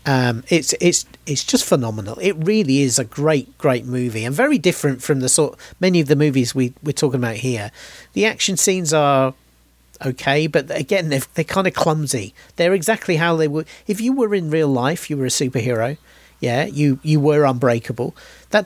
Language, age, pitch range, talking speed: English, 40-59, 130-175 Hz, 195 wpm